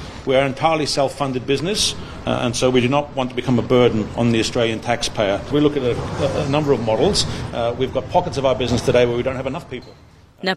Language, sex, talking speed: Croatian, female, 250 wpm